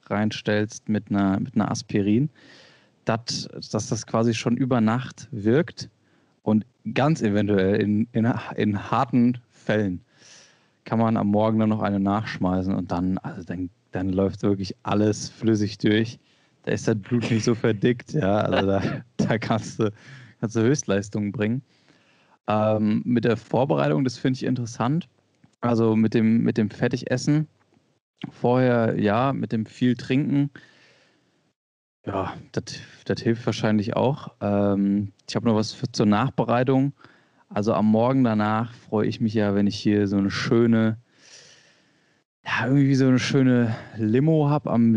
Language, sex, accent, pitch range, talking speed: German, male, German, 105-125 Hz, 150 wpm